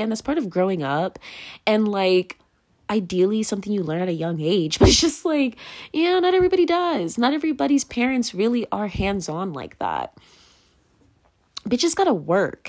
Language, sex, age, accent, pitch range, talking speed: English, female, 20-39, American, 185-285 Hz, 170 wpm